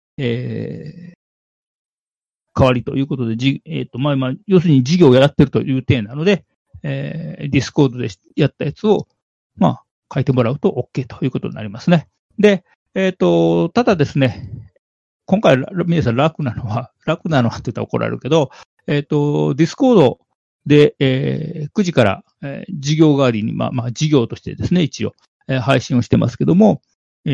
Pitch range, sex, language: 120-160 Hz, male, Japanese